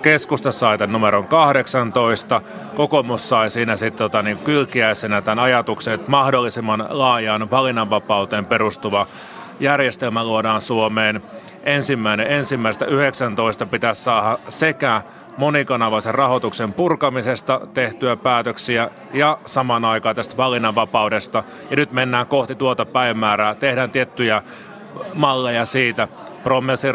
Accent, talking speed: native, 105 wpm